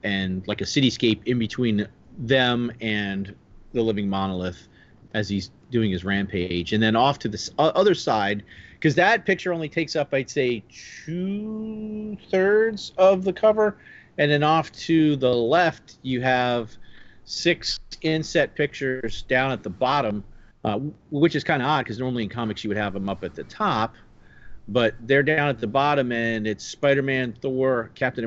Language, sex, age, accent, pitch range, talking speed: English, male, 40-59, American, 100-135 Hz, 170 wpm